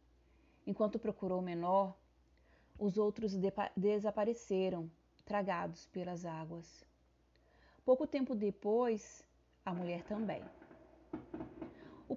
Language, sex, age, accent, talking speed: English, female, 30-49, Brazilian, 90 wpm